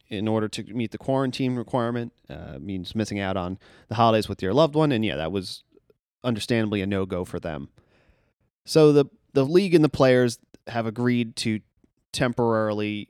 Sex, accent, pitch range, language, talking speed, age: male, American, 105-125 Hz, English, 180 wpm, 30-49